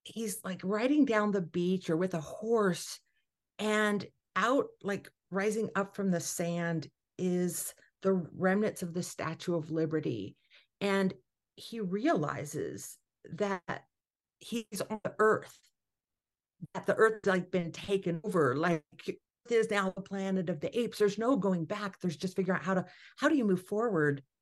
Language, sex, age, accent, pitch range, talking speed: English, female, 50-69, American, 170-220 Hz, 160 wpm